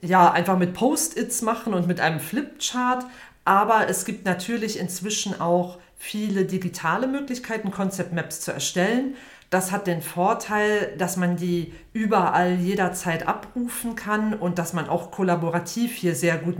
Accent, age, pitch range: German, 40-59, 165-205 Hz